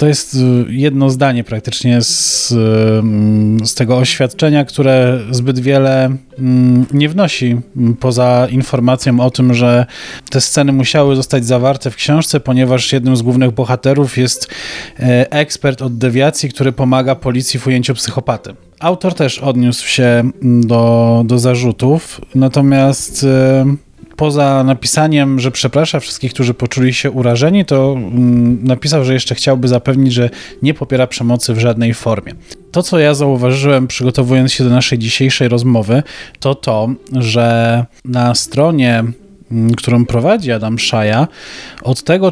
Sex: male